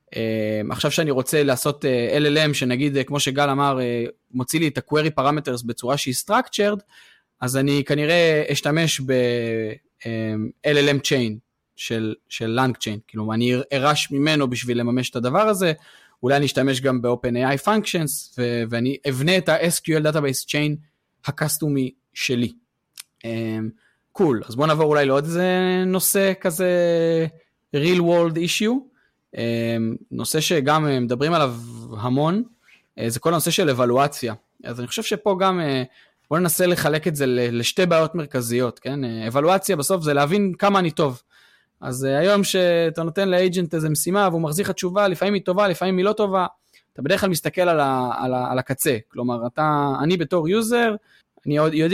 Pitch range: 125-180 Hz